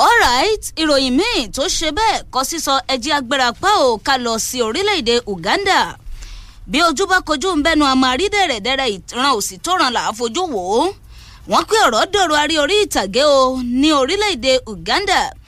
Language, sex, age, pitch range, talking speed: English, female, 20-39, 250-365 Hz, 125 wpm